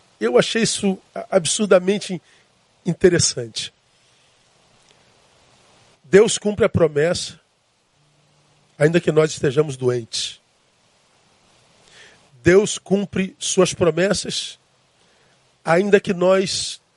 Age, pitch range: 40-59, 160-205 Hz